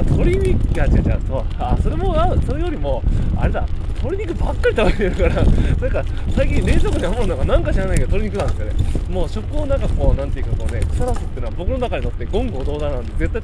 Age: 20-39